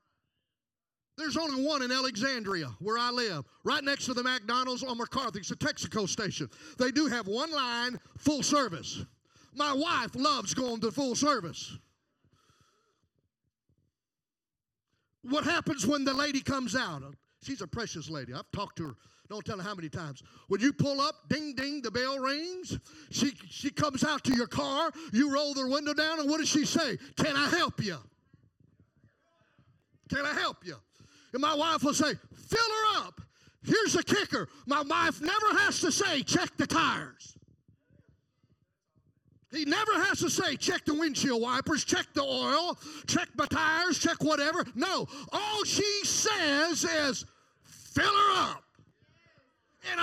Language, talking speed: English, 160 wpm